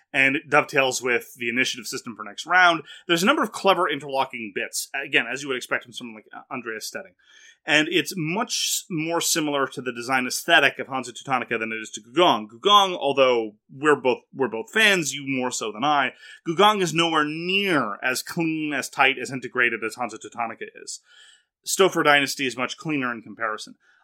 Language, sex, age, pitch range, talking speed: English, male, 30-49, 125-170 Hz, 190 wpm